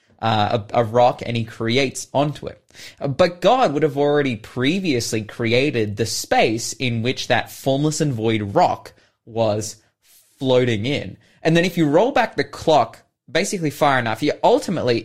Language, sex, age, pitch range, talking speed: English, male, 20-39, 115-145 Hz, 165 wpm